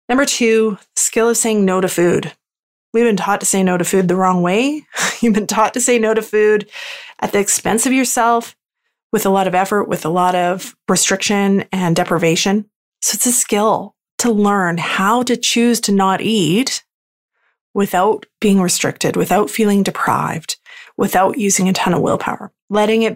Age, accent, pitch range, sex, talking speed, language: 30-49, American, 185-230 Hz, female, 180 wpm, English